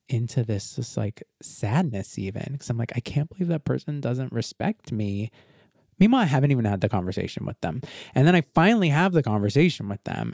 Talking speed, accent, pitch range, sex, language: 205 wpm, American, 115-160 Hz, male, English